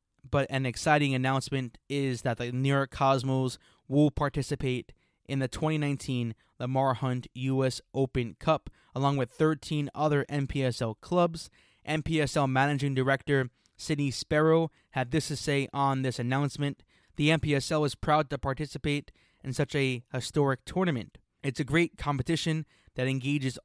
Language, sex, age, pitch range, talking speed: English, male, 20-39, 125-150 Hz, 140 wpm